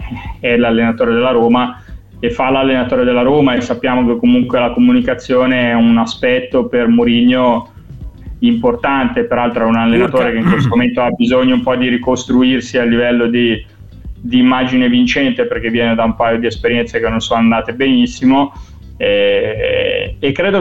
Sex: male